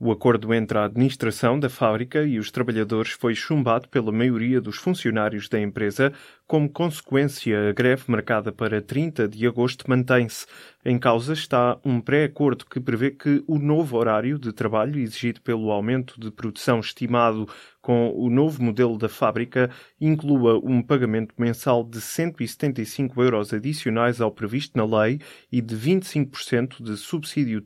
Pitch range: 115-140 Hz